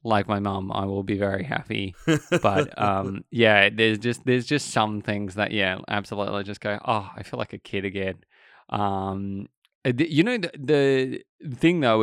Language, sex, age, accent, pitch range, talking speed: English, male, 20-39, Australian, 100-115 Hz, 180 wpm